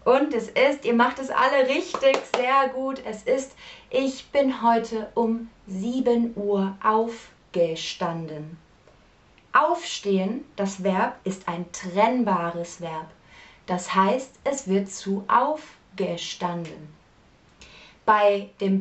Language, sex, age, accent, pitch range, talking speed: German, female, 30-49, German, 190-265 Hz, 110 wpm